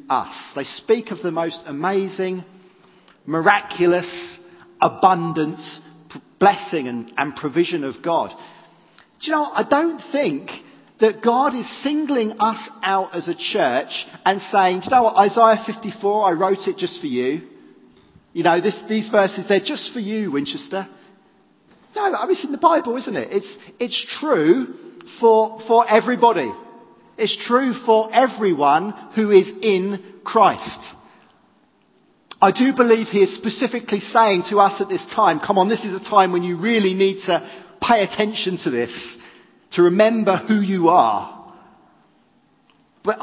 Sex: male